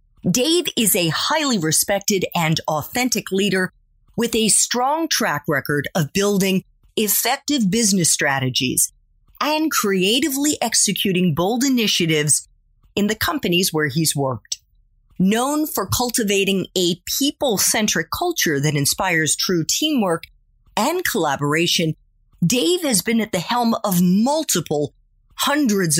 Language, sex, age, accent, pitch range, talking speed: English, female, 40-59, American, 160-245 Hz, 115 wpm